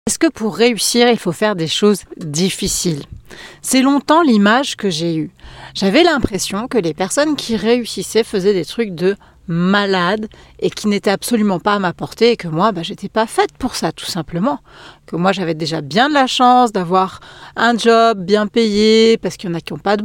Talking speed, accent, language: 210 wpm, French, French